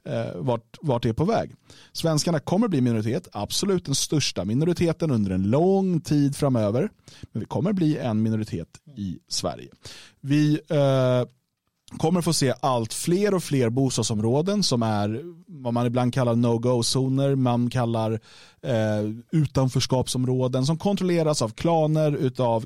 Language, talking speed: Swedish, 150 wpm